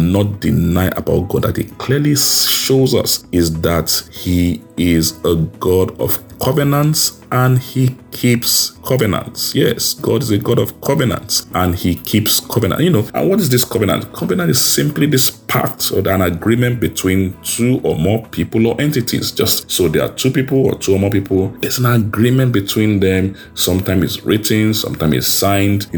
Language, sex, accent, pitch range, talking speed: English, male, Nigerian, 85-120 Hz, 180 wpm